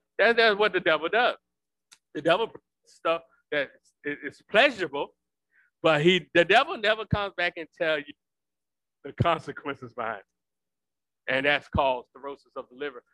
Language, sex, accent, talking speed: English, male, American, 150 wpm